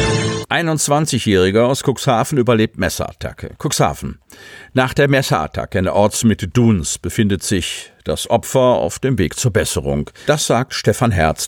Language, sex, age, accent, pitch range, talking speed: German, male, 50-69, German, 90-120 Hz, 140 wpm